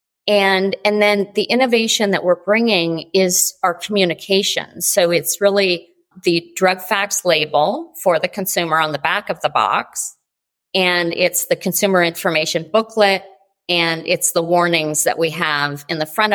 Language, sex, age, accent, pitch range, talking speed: English, female, 40-59, American, 160-195 Hz, 160 wpm